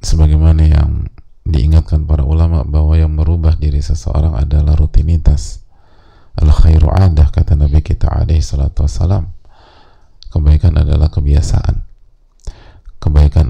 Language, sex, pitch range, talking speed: English, male, 75-90 Hz, 110 wpm